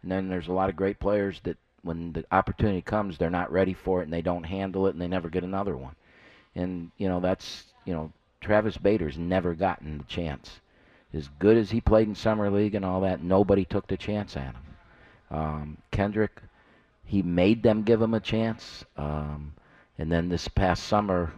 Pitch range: 85-100 Hz